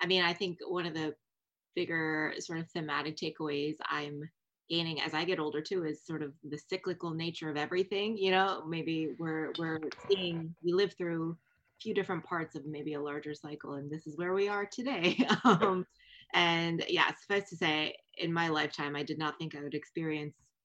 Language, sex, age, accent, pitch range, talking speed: English, female, 20-39, American, 150-180 Hz, 200 wpm